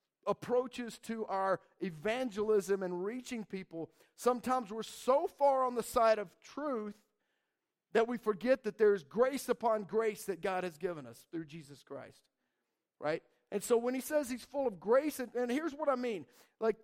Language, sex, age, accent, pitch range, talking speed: English, male, 50-69, American, 205-260 Hz, 175 wpm